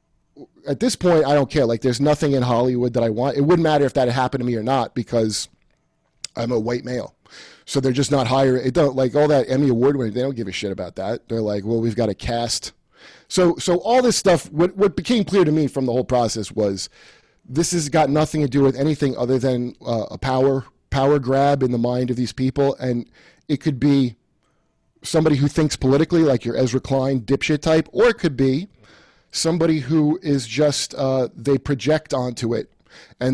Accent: American